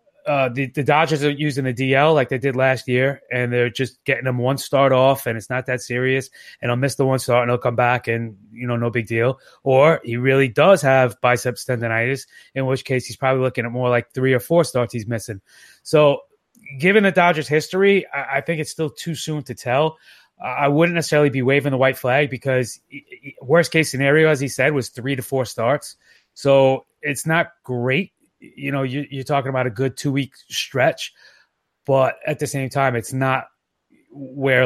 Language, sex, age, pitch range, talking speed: English, male, 30-49, 125-145 Hz, 210 wpm